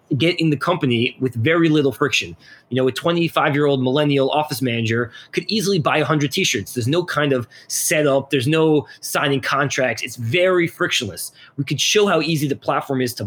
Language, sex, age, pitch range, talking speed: English, male, 20-39, 130-160 Hz, 200 wpm